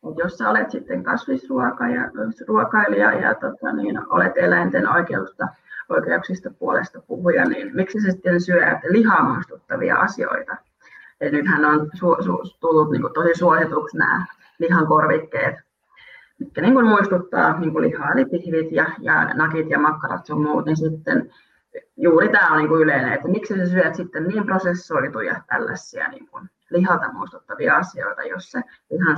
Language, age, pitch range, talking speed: Finnish, 30-49, 160-205 Hz, 150 wpm